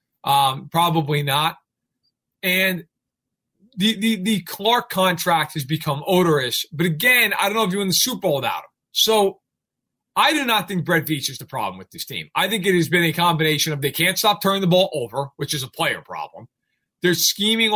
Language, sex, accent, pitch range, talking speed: English, male, American, 155-205 Hz, 205 wpm